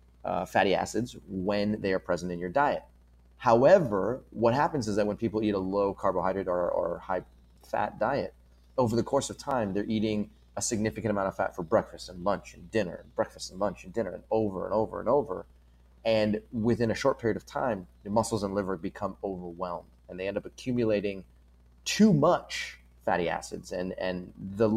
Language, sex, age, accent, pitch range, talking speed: English, male, 30-49, American, 85-105 Hz, 195 wpm